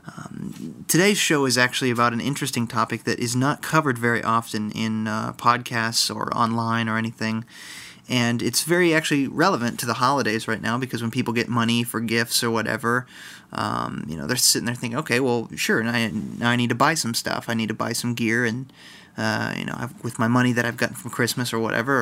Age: 20-39